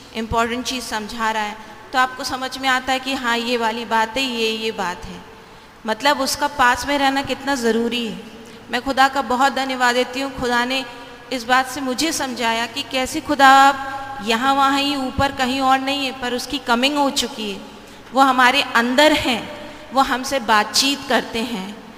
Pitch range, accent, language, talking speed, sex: 230-275 Hz, native, Hindi, 190 wpm, female